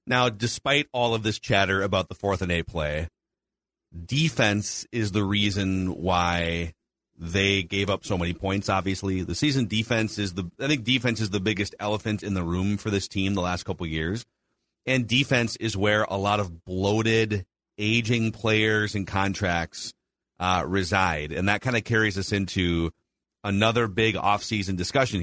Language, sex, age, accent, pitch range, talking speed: English, male, 30-49, American, 95-125 Hz, 175 wpm